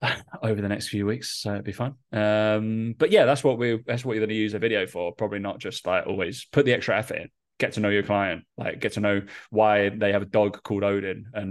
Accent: British